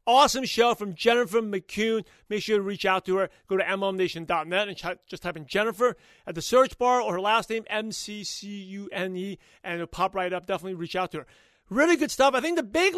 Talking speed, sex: 215 wpm, male